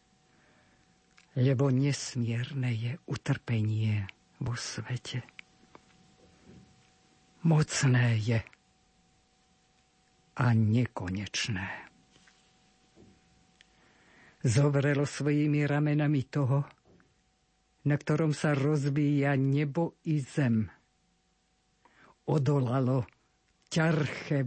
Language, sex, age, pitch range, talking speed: Slovak, female, 50-69, 120-155 Hz, 55 wpm